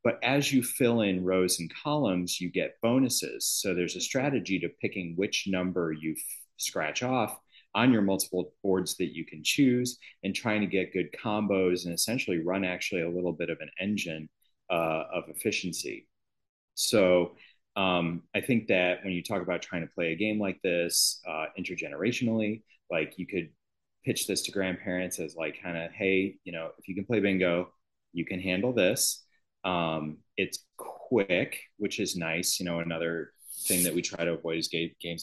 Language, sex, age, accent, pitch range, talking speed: English, male, 30-49, American, 85-105 Hz, 185 wpm